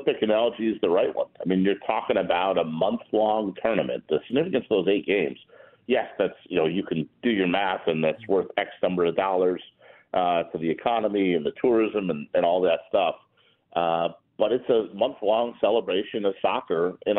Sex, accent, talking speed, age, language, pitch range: male, American, 205 wpm, 50-69, English, 90-120 Hz